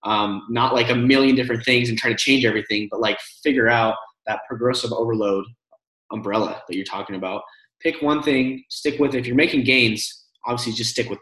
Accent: American